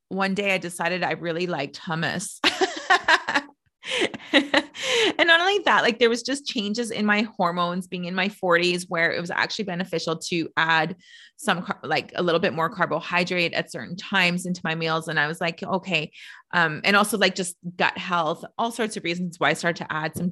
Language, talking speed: English, 195 wpm